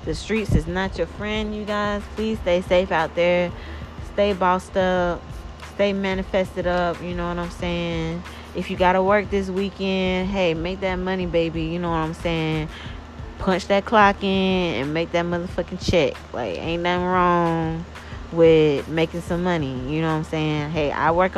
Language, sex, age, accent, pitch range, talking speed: English, female, 20-39, American, 160-190 Hz, 185 wpm